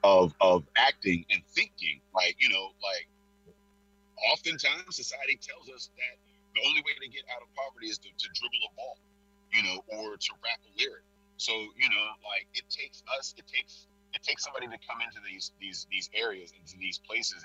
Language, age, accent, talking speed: English, 30-49, American, 195 wpm